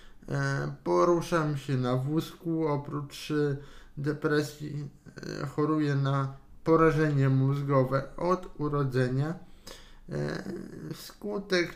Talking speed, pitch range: 65 wpm, 135-160 Hz